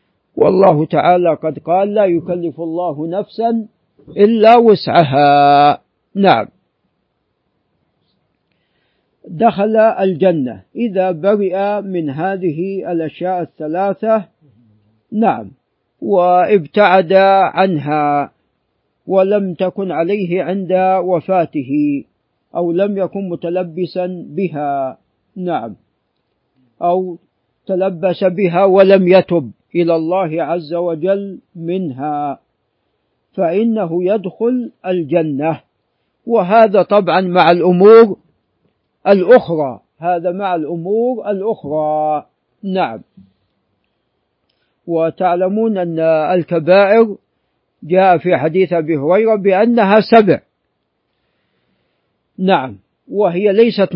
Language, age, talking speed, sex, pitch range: Arabic, 50-69, 75 wpm, male, 165-200 Hz